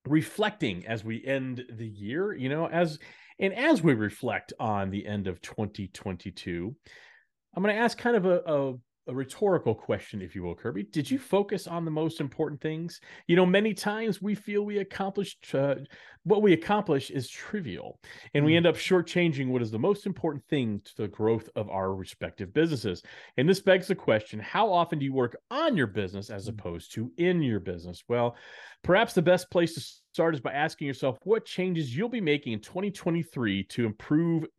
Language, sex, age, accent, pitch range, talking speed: English, male, 40-59, American, 110-175 Hz, 195 wpm